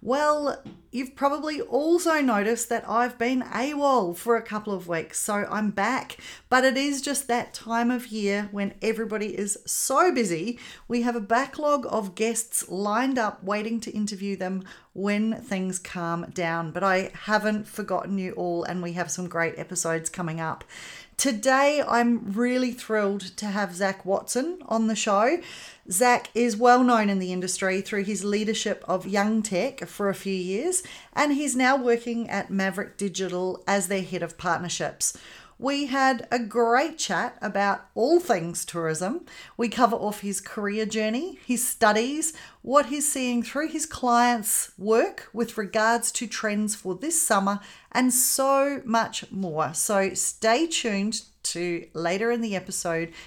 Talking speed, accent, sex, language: 160 wpm, Australian, female, English